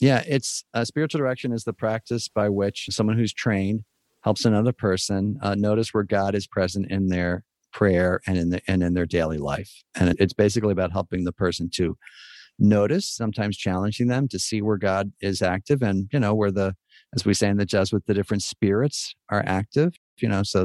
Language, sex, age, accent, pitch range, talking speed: English, male, 40-59, American, 95-115 Hz, 205 wpm